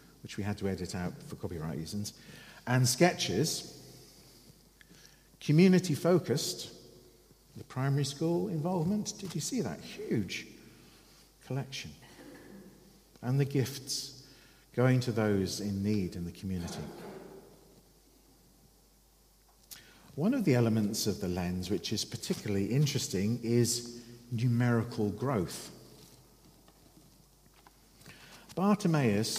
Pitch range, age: 105-135 Hz, 50-69